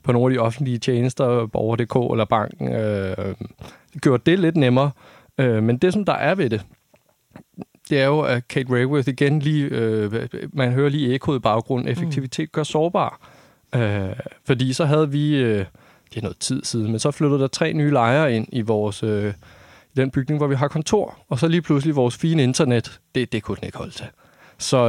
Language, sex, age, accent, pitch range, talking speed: Danish, male, 30-49, native, 115-145 Hz, 205 wpm